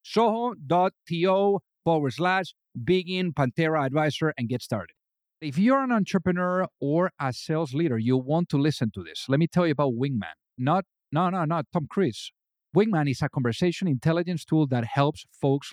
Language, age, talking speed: English, 50-69, 170 wpm